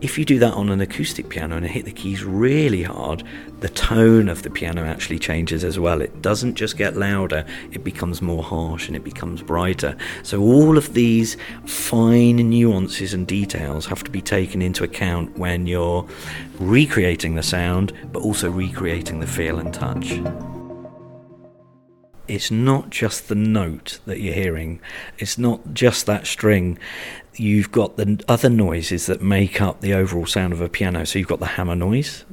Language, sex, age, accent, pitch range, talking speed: English, male, 40-59, British, 90-115 Hz, 175 wpm